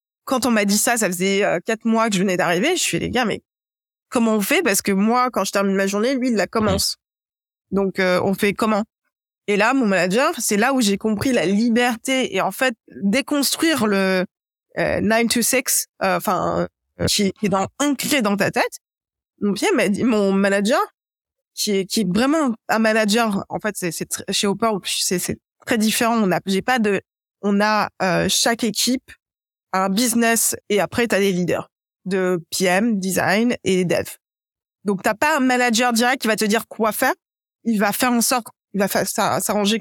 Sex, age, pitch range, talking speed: female, 20-39, 195-245 Hz, 205 wpm